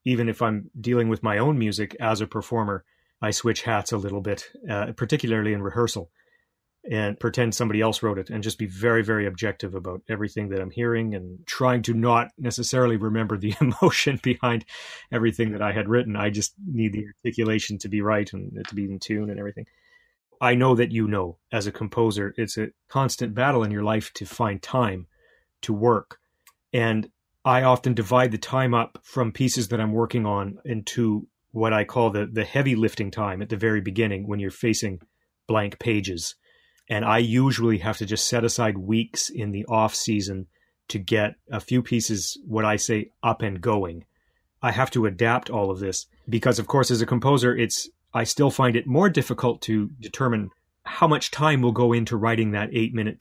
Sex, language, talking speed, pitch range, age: male, English, 195 wpm, 105-120 Hz, 30-49